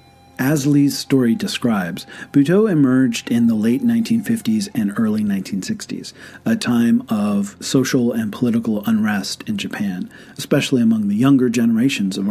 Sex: male